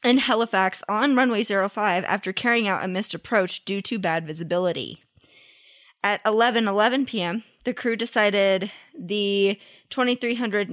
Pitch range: 180-230 Hz